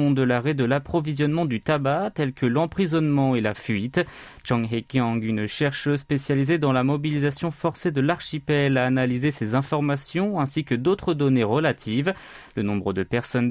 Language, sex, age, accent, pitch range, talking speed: French, male, 30-49, French, 125-160 Hz, 160 wpm